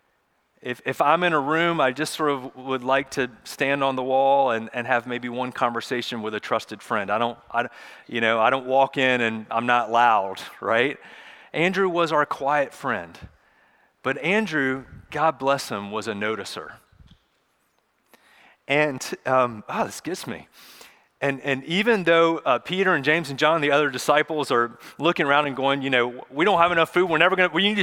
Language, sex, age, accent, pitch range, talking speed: English, male, 30-49, American, 115-160 Hz, 190 wpm